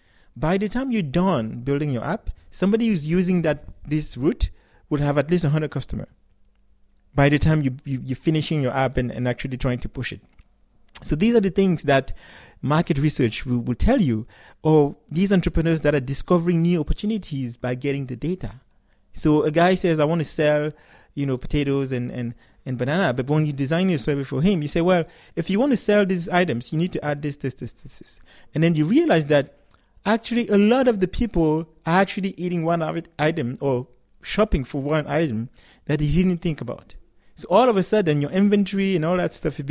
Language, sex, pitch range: English, male, 130-175 Hz